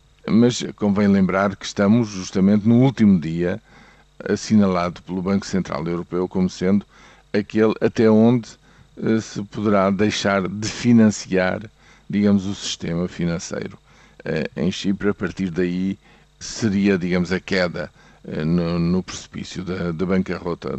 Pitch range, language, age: 90-105 Hz, Portuguese, 50-69